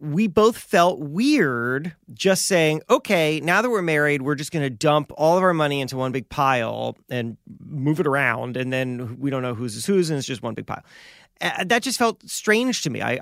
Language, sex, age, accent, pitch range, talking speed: English, male, 30-49, American, 125-180 Hz, 220 wpm